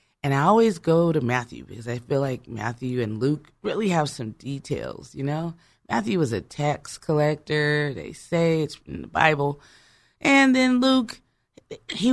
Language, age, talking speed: English, 30-49, 170 wpm